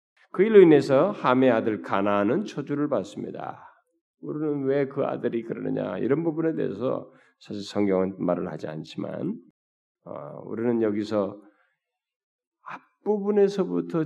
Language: Korean